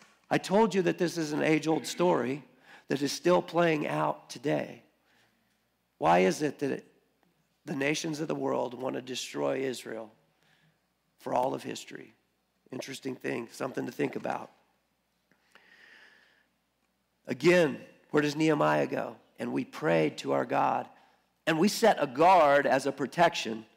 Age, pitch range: 50-69, 145-195 Hz